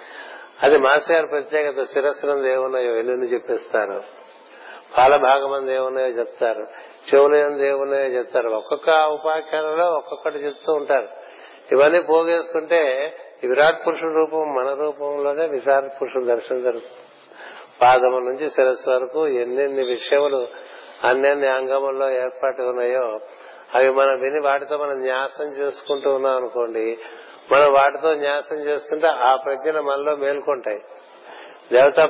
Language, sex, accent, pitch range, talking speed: Telugu, male, native, 130-155 Hz, 110 wpm